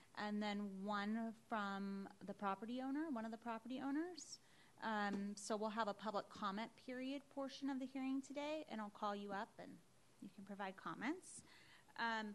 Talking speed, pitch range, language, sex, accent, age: 175 wpm, 200-250 Hz, English, female, American, 30-49